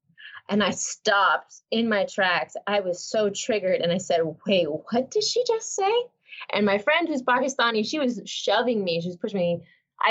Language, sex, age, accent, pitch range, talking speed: English, female, 20-39, American, 190-285 Hz, 190 wpm